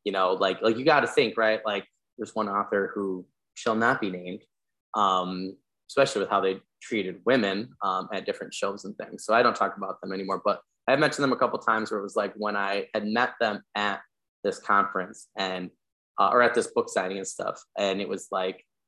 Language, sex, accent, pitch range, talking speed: English, male, American, 95-115 Hz, 225 wpm